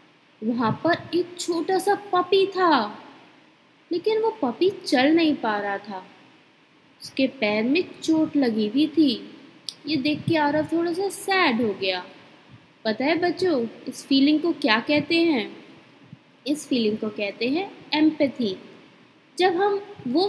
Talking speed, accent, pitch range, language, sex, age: 145 wpm, native, 255-345 Hz, Hindi, female, 20-39